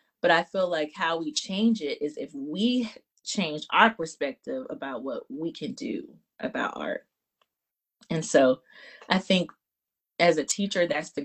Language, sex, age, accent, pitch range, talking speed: English, female, 30-49, American, 165-265 Hz, 160 wpm